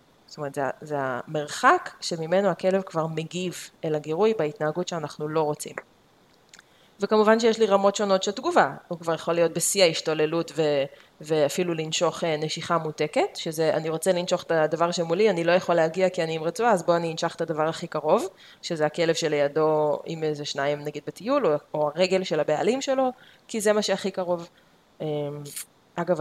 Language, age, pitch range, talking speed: Hebrew, 20-39, 155-195 Hz, 170 wpm